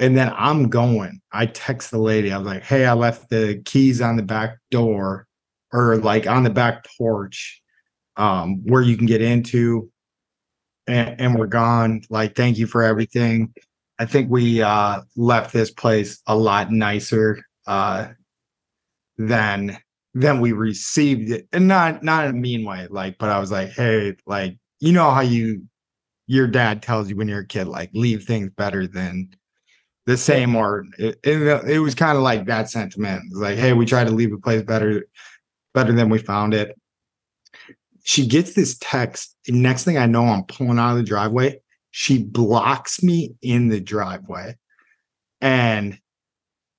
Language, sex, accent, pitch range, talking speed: English, male, American, 105-125 Hz, 175 wpm